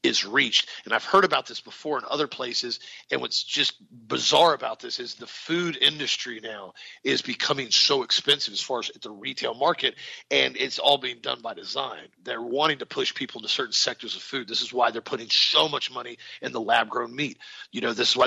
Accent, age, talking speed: American, 40-59, 220 wpm